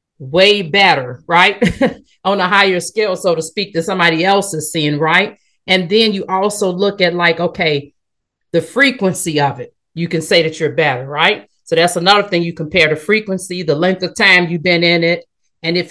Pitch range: 165-200 Hz